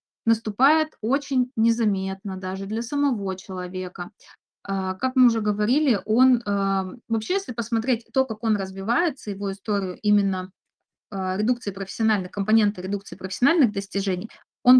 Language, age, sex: Russian, 20-39, female